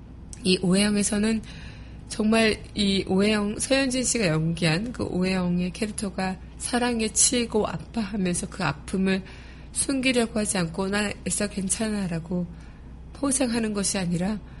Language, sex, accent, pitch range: Korean, female, native, 175-215 Hz